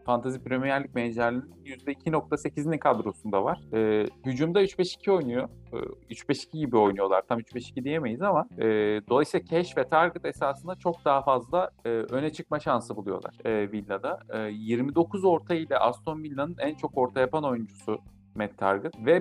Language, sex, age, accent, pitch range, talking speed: Turkish, male, 50-69, native, 115-150 Hz, 155 wpm